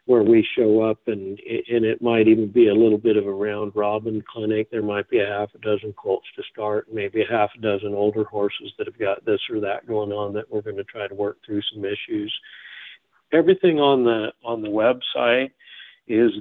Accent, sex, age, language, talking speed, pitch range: American, male, 50-69, English, 220 wpm, 110-120 Hz